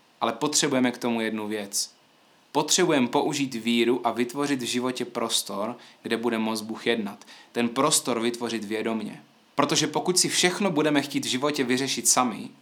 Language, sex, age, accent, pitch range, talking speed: Czech, male, 20-39, native, 140-190 Hz, 155 wpm